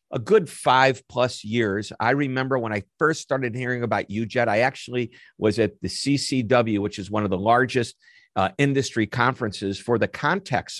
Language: English